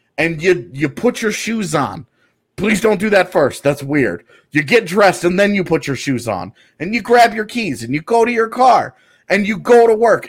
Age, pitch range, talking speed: 30-49, 150-215 Hz, 235 wpm